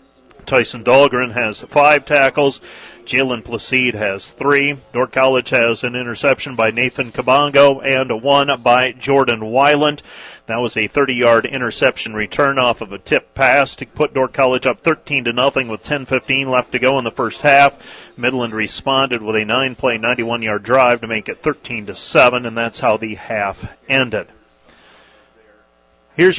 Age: 40-59